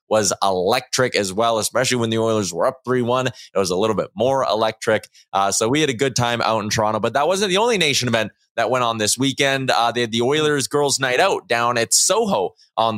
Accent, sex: American, male